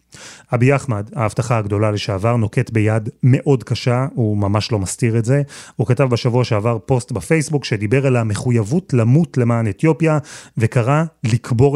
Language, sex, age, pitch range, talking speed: Hebrew, male, 30-49, 110-135 Hz, 150 wpm